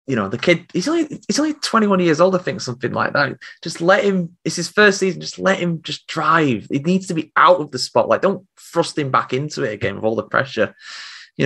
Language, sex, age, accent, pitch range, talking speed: English, male, 20-39, British, 110-150 Hz, 250 wpm